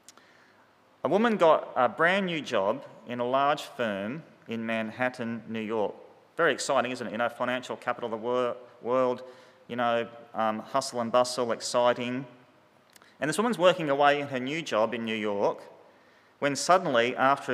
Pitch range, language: 110-135 Hz, English